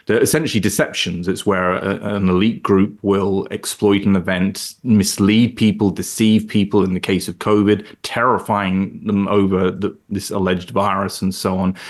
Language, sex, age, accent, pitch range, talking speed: English, male, 30-49, British, 95-105 Hz, 160 wpm